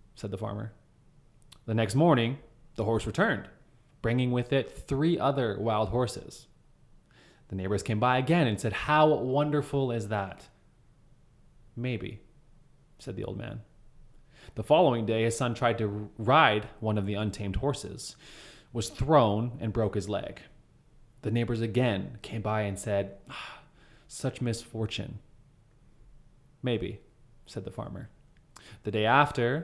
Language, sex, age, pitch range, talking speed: English, male, 20-39, 110-135 Hz, 140 wpm